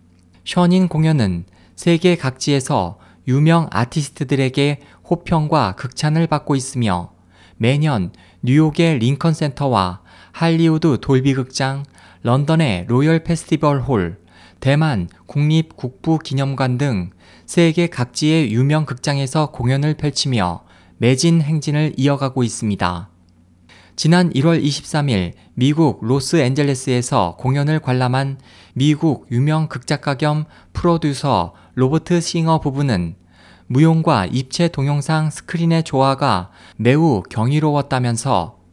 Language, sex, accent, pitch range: Korean, male, native, 105-155 Hz